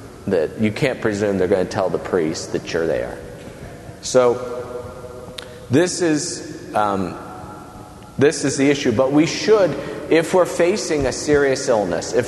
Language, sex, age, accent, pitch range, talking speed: English, male, 40-59, American, 95-130 Hz, 150 wpm